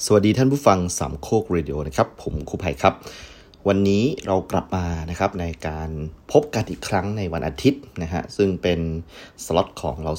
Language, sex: Thai, male